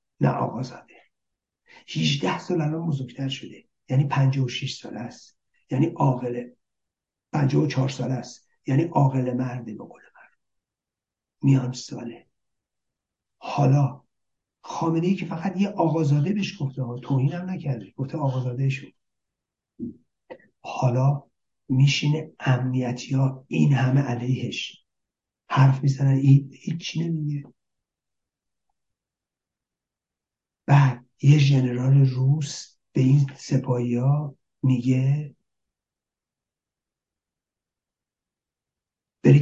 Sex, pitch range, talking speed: male, 130-150 Hz, 95 wpm